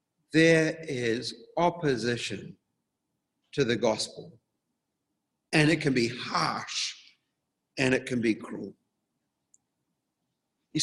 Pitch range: 120-165 Hz